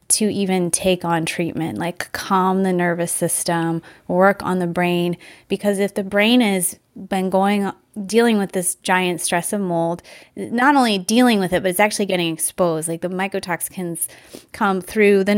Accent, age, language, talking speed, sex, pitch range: American, 20-39, English, 170 wpm, female, 180-205 Hz